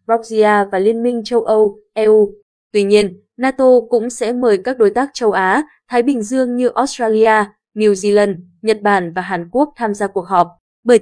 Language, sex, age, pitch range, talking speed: Vietnamese, female, 20-39, 200-240 Hz, 185 wpm